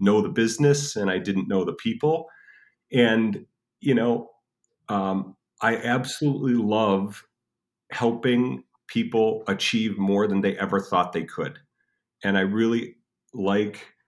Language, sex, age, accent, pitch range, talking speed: English, male, 40-59, American, 100-120 Hz, 130 wpm